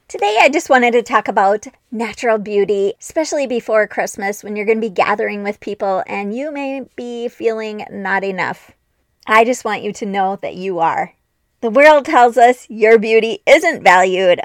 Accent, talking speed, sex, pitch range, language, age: American, 185 wpm, female, 205-270 Hz, English, 20-39